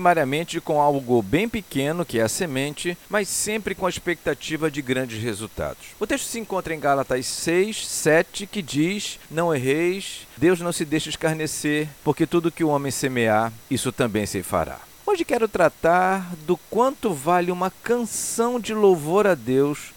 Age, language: 50-69, Portuguese